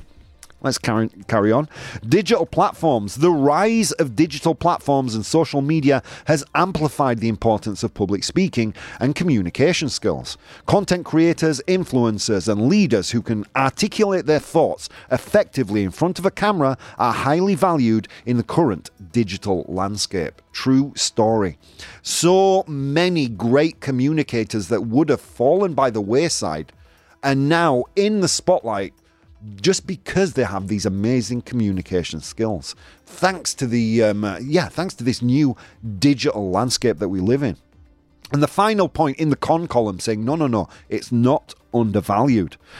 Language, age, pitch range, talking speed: English, 40-59, 110-165 Hz, 145 wpm